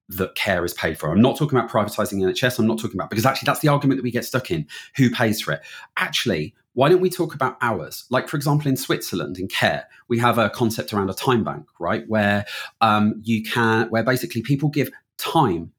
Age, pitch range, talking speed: 30-49, 110-140 Hz, 235 wpm